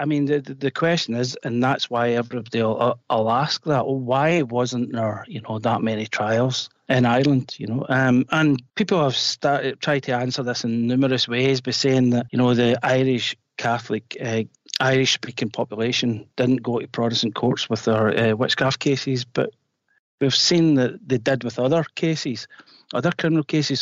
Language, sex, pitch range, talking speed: English, male, 120-140 Hz, 185 wpm